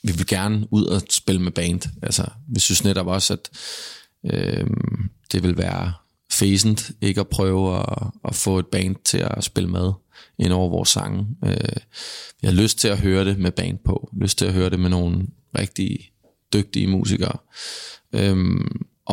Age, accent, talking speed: 20-39, native, 180 wpm